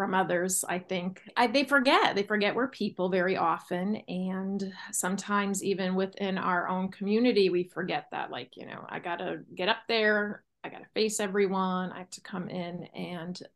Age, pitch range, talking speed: 30-49, 185-215 Hz, 185 wpm